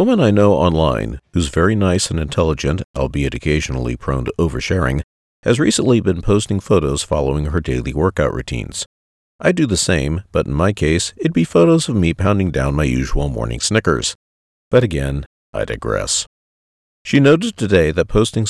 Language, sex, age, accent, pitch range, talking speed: English, male, 50-69, American, 70-100 Hz, 170 wpm